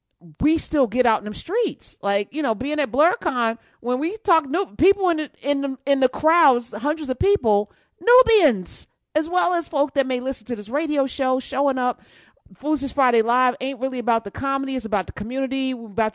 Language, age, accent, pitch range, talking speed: English, 40-59, American, 205-280 Hz, 210 wpm